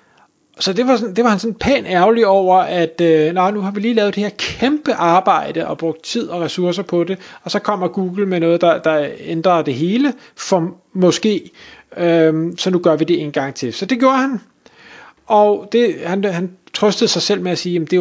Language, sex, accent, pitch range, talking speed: Danish, male, native, 160-210 Hz, 230 wpm